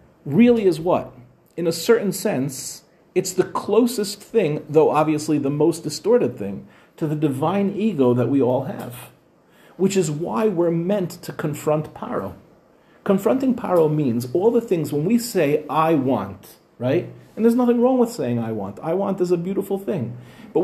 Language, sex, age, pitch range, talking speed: English, male, 40-59, 130-190 Hz, 175 wpm